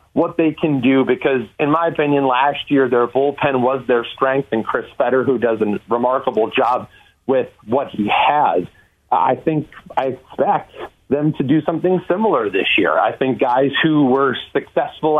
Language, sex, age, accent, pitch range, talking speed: English, male, 40-59, American, 125-155 Hz, 175 wpm